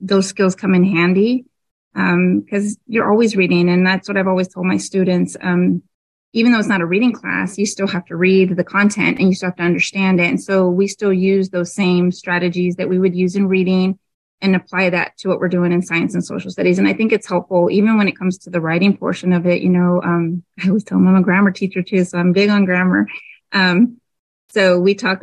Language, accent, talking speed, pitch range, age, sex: English, American, 245 wpm, 180-200 Hz, 30-49, female